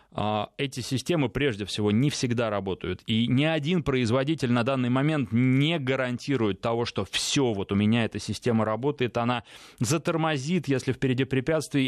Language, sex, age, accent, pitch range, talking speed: Russian, male, 20-39, native, 115-155 Hz, 150 wpm